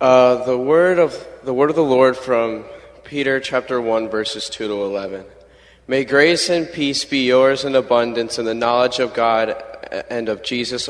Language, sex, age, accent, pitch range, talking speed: English, male, 20-39, American, 105-130 Hz, 180 wpm